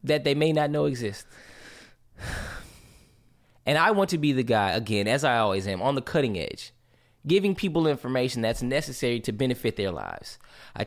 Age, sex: 20-39, male